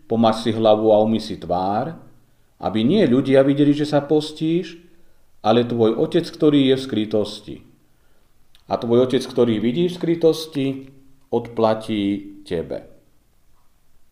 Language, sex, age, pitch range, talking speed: Slovak, male, 40-59, 105-150 Hz, 130 wpm